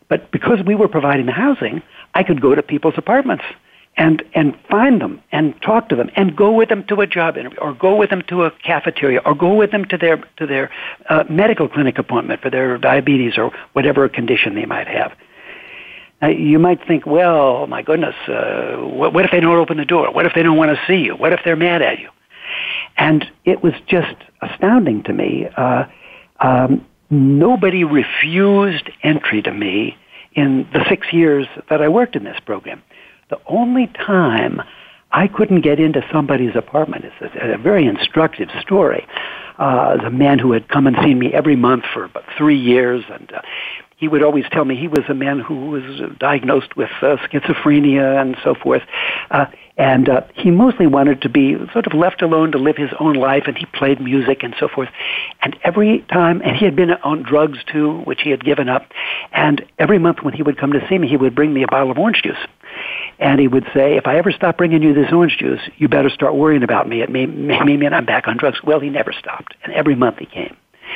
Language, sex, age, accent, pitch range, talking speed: English, male, 60-79, American, 140-180 Hz, 215 wpm